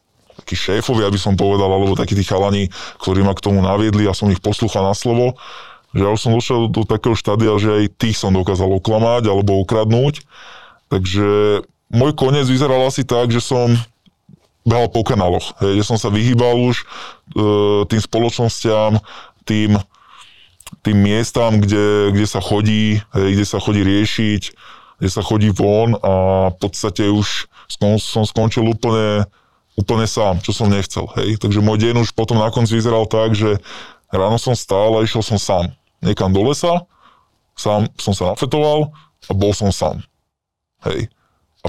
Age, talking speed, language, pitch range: 20-39, 165 wpm, Slovak, 100-115 Hz